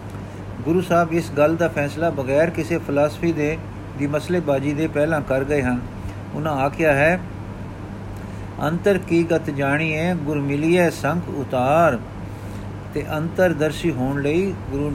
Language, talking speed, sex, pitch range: Punjabi, 135 wpm, male, 105-160 Hz